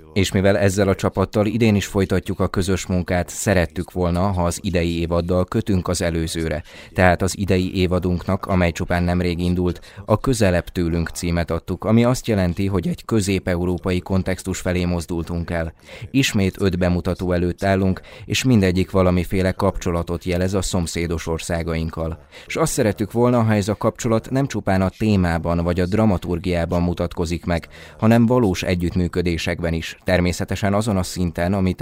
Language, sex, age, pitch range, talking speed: Hungarian, male, 20-39, 85-100 Hz, 155 wpm